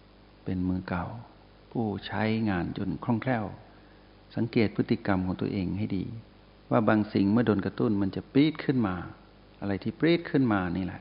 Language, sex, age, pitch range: Thai, male, 60-79, 95-110 Hz